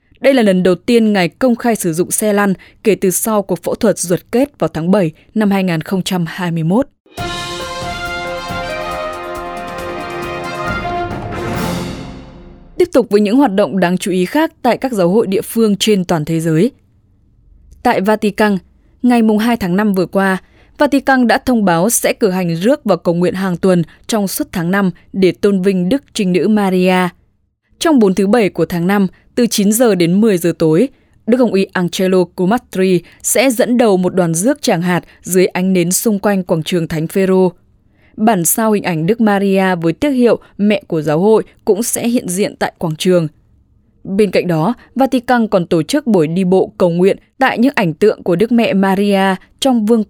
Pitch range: 175-225 Hz